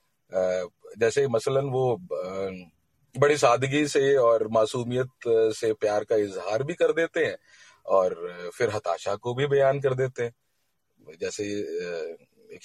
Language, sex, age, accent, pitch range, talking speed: Hindi, male, 40-59, native, 110-175 Hz, 130 wpm